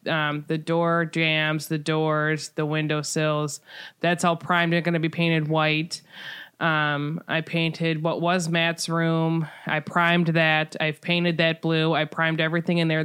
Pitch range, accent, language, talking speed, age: 155-175 Hz, American, English, 170 wpm, 20-39